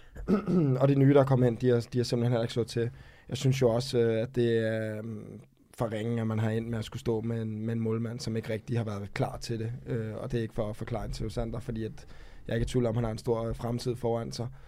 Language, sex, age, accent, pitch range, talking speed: Danish, male, 20-39, native, 115-130 Hz, 280 wpm